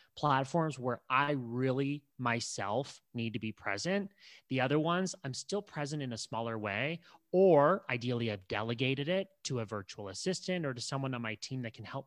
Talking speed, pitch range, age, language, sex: 185 wpm, 110-145 Hz, 30-49, English, male